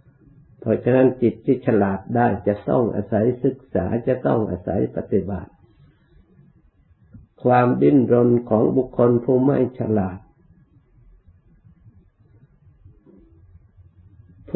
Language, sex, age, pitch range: Thai, male, 60-79, 95-125 Hz